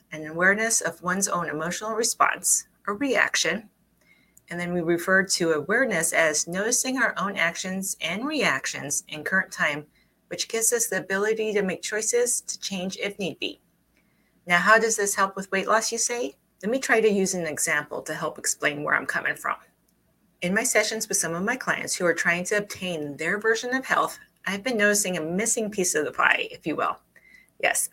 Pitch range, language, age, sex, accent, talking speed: 175-225 Hz, English, 30-49, female, American, 200 wpm